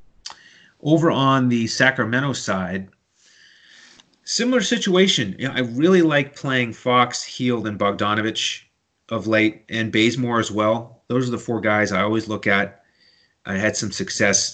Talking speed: 150 wpm